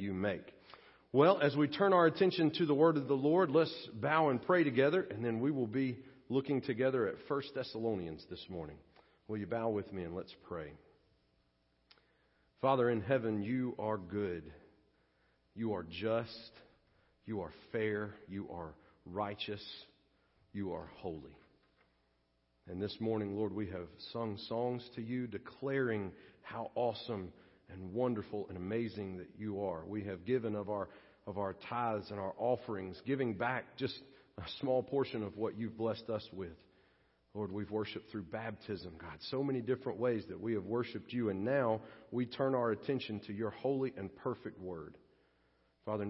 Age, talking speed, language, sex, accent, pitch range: 40-59, 165 wpm, English, male, American, 95-125 Hz